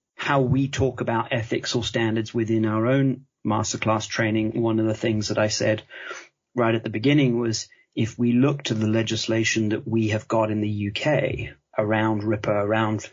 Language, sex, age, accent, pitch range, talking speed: English, male, 30-49, British, 110-125 Hz, 185 wpm